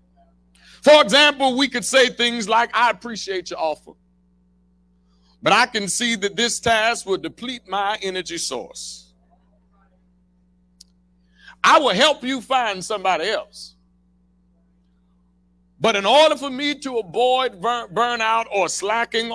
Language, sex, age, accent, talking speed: English, male, 60-79, American, 125 wpm